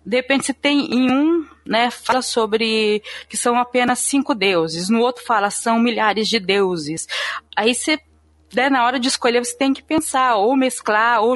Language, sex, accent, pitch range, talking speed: Portuguese, female, Brazilian, 205-260 Hz, 185 wpm